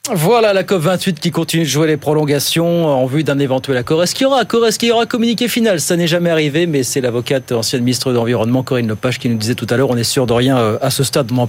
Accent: French